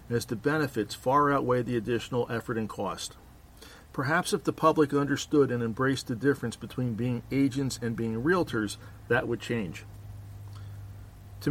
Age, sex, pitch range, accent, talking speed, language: 50-69, male, 110-140 Hz, American, 150 wpm, English